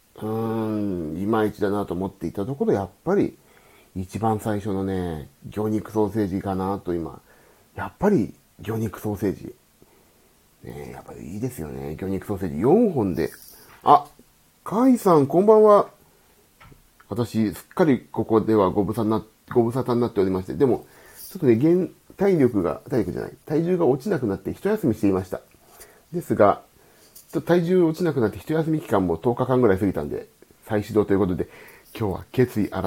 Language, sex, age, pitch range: Japanese, male, 40-59, 95-125 Hz